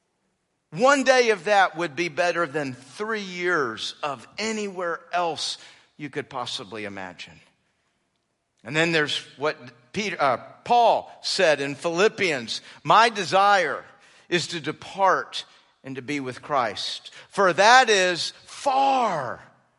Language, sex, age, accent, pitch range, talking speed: English, male, 50-69, American, 175-270 Hz, 120 wpm